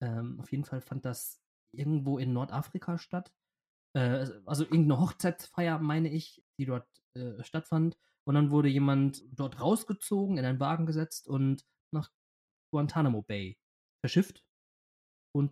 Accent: German